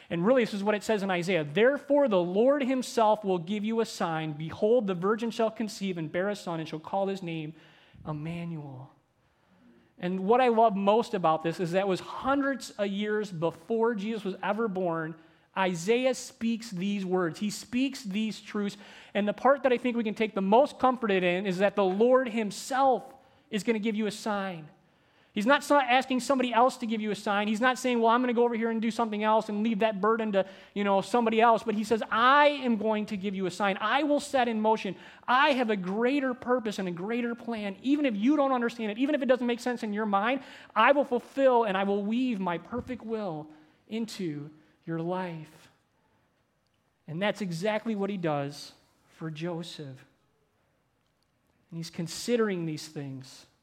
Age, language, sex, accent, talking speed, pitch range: 30-49, English, male, American, 205 wpm, 180-235 Hz